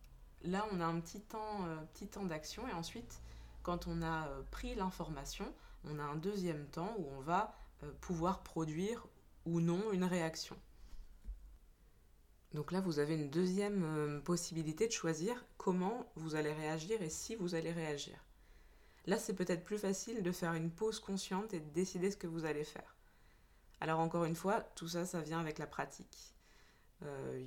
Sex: female